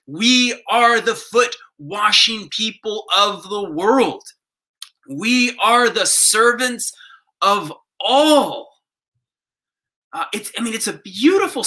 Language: English